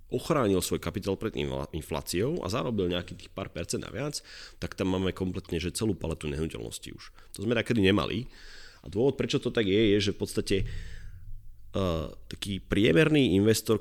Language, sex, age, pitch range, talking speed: Slovak, male, 30-49, 80-100 Hz, 165 wpm